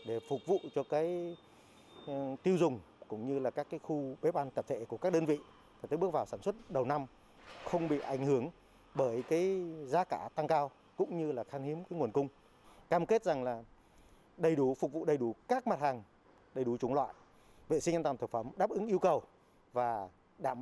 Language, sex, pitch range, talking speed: Vietnamese, male, 115-160 Hz, 220 wpm